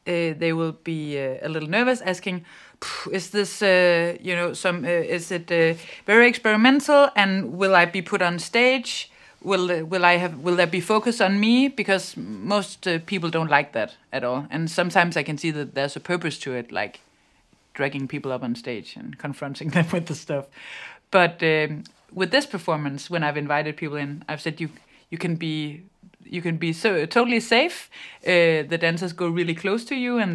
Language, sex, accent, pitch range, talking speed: Danish, female, native, 150-190 Hz, 200 wpm